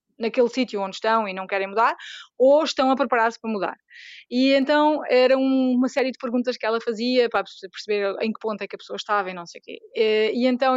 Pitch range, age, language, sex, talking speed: 220-295 Hz, 20-39, Portuguese, female, 235 wpm